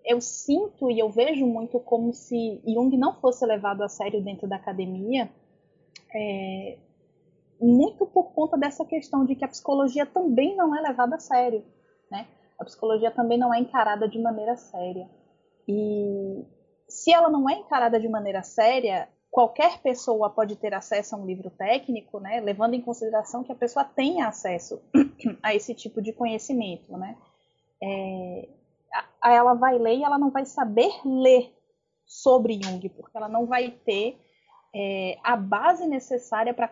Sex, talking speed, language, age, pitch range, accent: female, 155 wpm, Portuguese, 20-39, 215-270 Hz, Brazilian